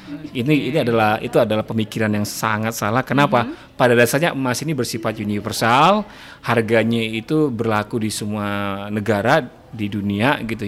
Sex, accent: male, native